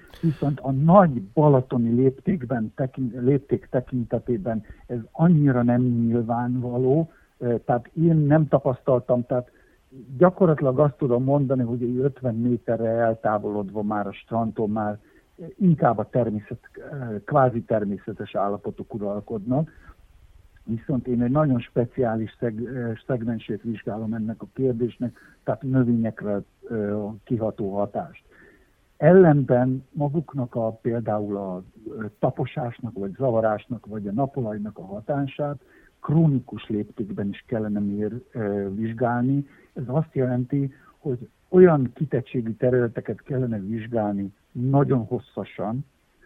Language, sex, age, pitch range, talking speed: Hungarian, male, 60-79, 110-135 Hz, 105 wpm